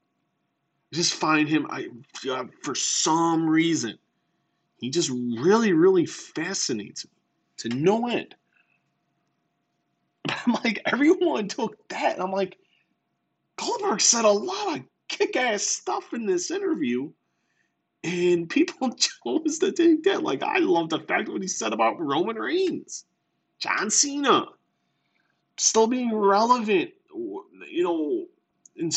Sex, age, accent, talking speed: male, 30-49, American, 125 wpm